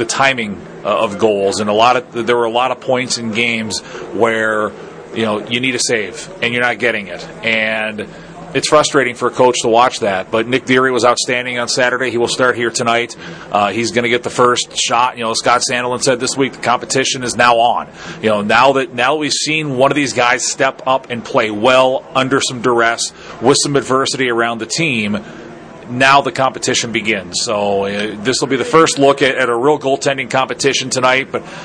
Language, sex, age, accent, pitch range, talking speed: English, male, 30-49, American, 115-130 Hz, 215 wpm